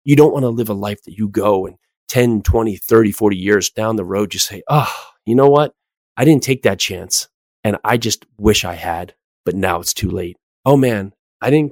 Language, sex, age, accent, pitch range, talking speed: English, male, 30-49, American, 100-125 Hz, 230 wpm